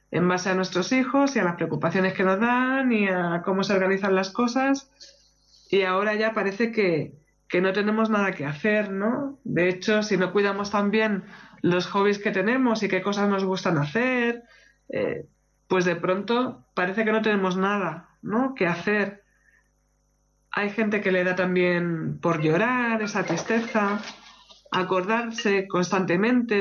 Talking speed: 160 wpm